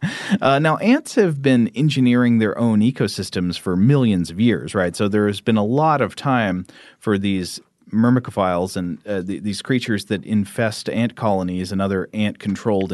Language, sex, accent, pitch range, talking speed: English, male, American, 95-130 Hz, 165 wpm